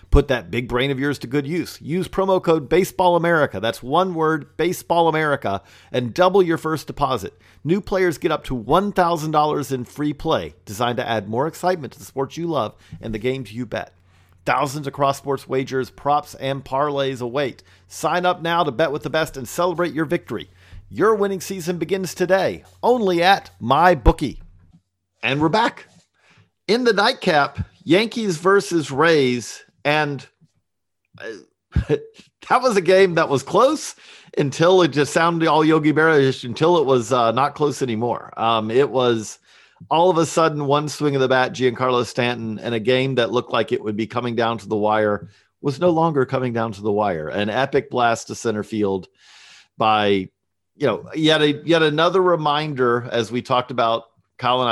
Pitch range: 115-165 Hz